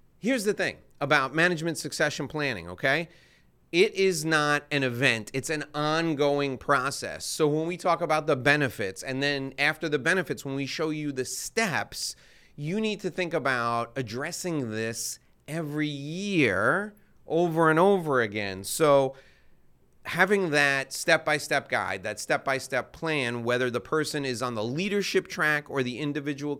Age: 30-49